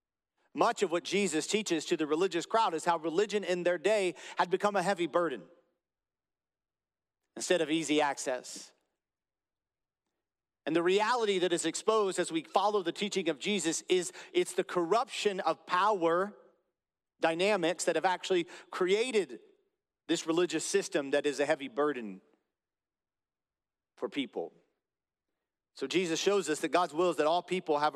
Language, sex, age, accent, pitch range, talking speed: English, male, 40-59, American, 150-195 Hz, 150 wpm